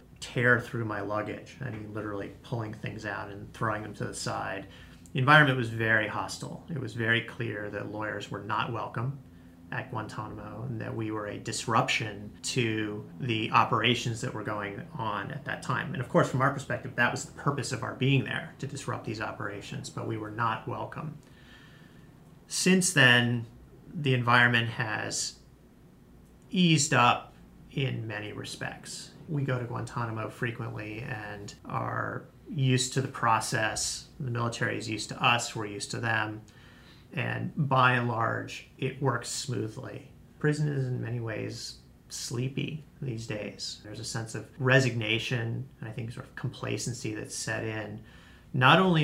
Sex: male